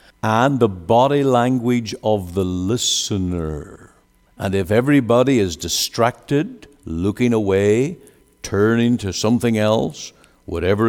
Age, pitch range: 60-79, 95-135 Hz